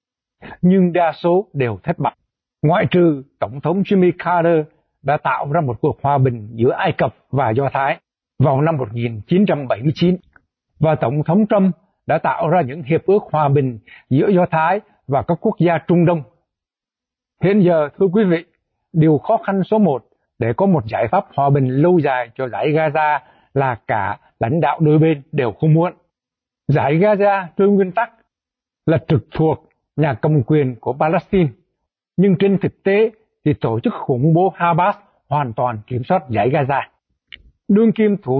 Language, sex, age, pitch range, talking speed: Vietnamese, male, 60-79, 145-190 Hz, 175 wpm